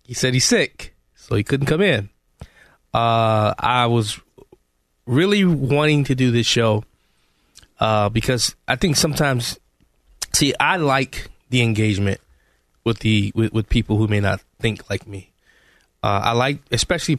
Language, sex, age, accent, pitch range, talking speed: English, male, 20-39, American, 105-130 Hz, 150 wpm